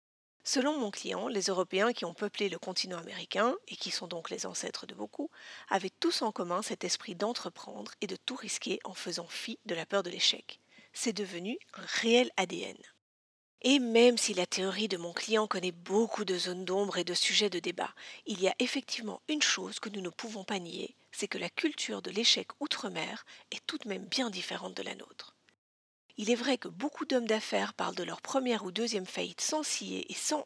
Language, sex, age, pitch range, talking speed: French, female, 40-59, 190-255 Hz, 210 wpm